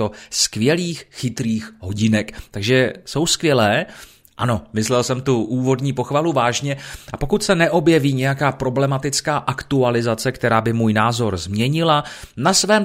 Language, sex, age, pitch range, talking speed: Czech, male, 30-49, 115-150 Hz, 125 wpm